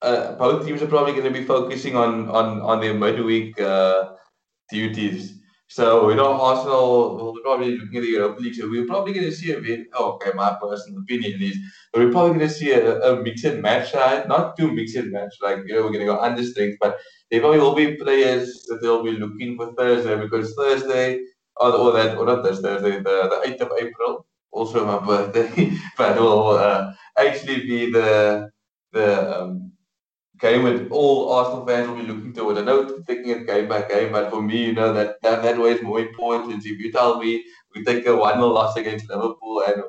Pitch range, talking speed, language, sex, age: 105-130 Hz, 215 wpm, English, male, 20-39